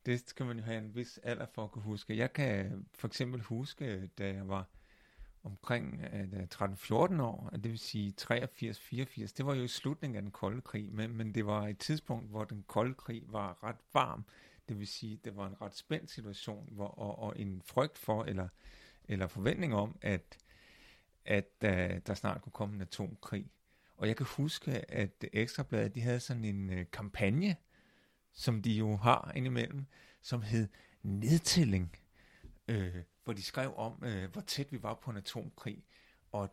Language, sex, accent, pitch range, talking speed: Danish, male, native, 100-130 Hz, 175 wpm